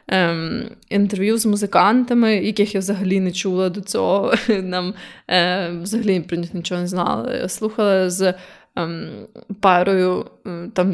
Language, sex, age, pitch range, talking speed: Ukrainian, female, 20-39, 185-215 Hz, 135 wpm